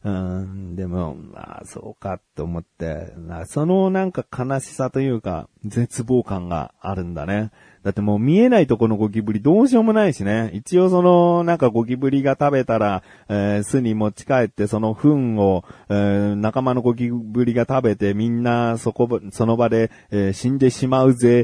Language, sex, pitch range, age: Japanese, male, 95-155 Hz, 40-59